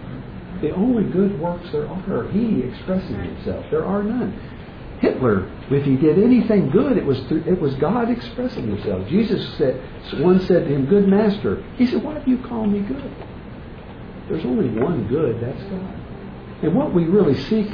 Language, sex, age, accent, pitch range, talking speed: English, male, 60-79, American, 115-175 Hz, 180 wpm